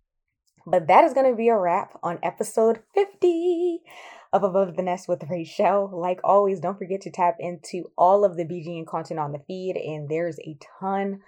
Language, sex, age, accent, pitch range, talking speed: English, female, 20-39, American, 160-190 Hz, 190 wpm